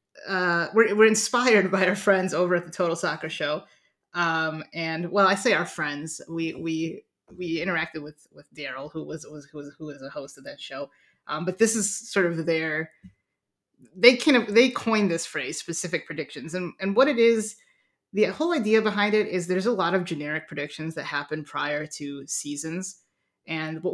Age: 30-49